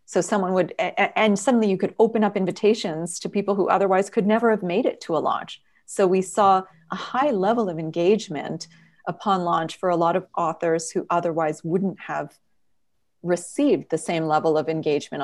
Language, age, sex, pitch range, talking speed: English, 30-49, female, 165-210 Hz, 185 wpm